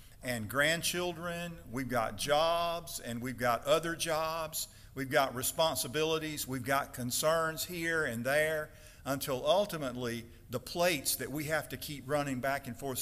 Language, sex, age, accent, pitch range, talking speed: English, male, 50-69, American, 115-145 Hz, 145 wpm